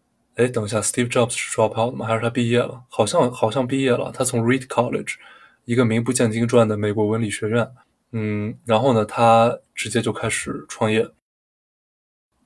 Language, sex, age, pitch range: Chinese, male, 20-39, 110-125 Hz